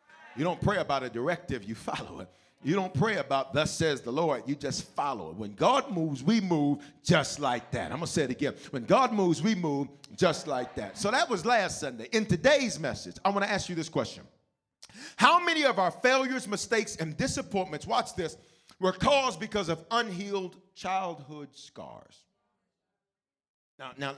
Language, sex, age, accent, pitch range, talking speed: English, male, 40-59, American, 150-215 Hz, 190 wpm